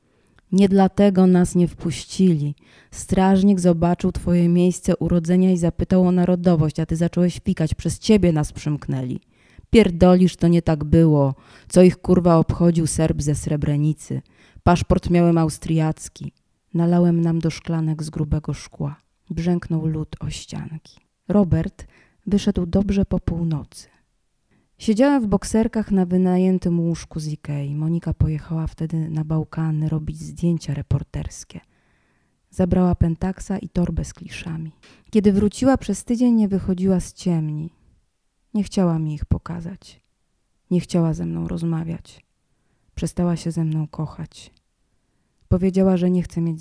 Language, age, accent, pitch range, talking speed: Polish, 20-39, native, 150-180 Hz, 135 wpm